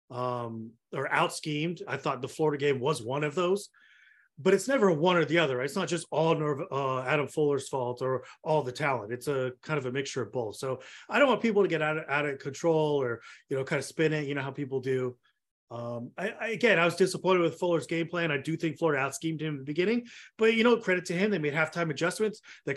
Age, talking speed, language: 30-49, 245 wpm, English